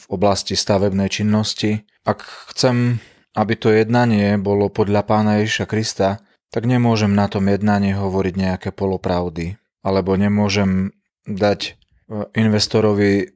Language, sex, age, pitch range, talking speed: Slovak, male, 30-49, 100-115 Hz, 115 wpm